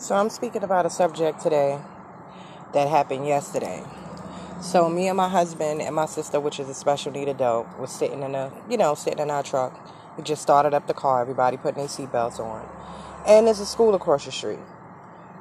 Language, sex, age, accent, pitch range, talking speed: English, female, 20-39, American, 155-195 Hz, 205 wpm